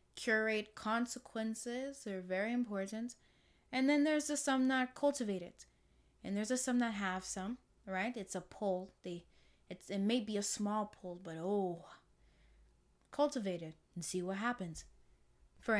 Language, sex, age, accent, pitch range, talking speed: English, female, 10-29, American, 180-235 Hz, 155 wpm